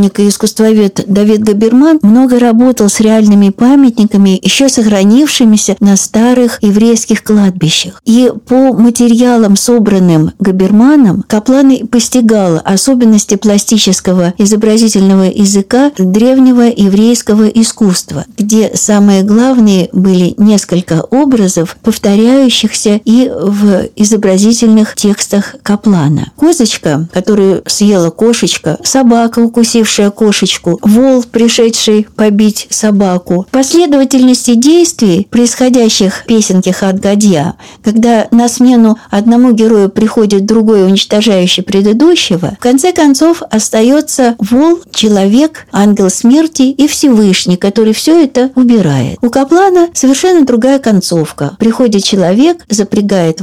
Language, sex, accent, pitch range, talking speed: Russian, female, native, 200-245 Hz, 100 wpm